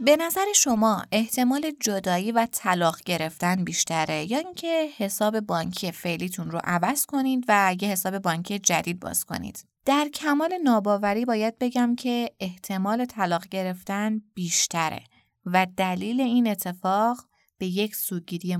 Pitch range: 180-245 Hz